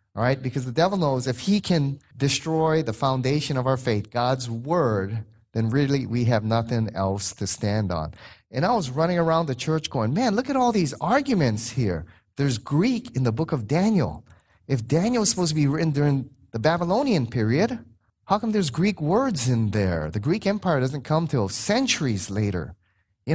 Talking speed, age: 195 wpm, 30-49